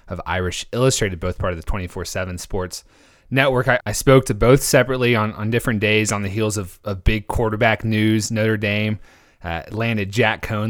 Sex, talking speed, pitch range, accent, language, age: male, 190 wpm, 95-115 Hz, American, English, 30-49